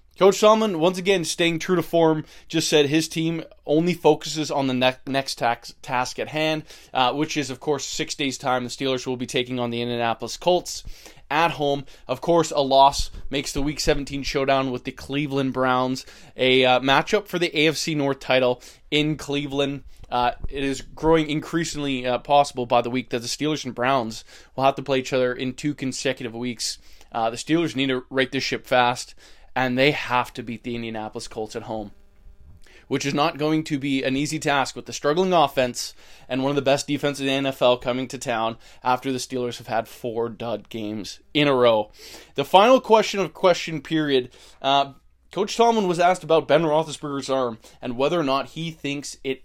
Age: 20-39